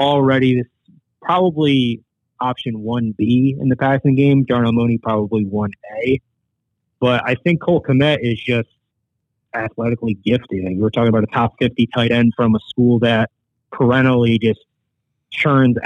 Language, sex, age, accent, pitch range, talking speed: English, male, 30-49, American, 110-125 Hz, 150 wpm